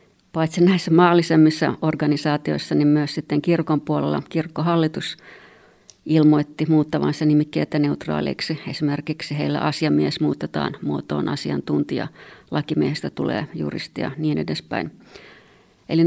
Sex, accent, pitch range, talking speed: female, native, 145-165 Hz, 100 wpm